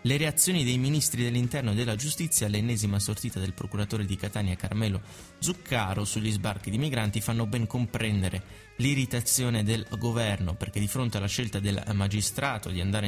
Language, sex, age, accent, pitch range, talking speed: Italian, male, 20-39, native, 100-120 Hz, 160 wpm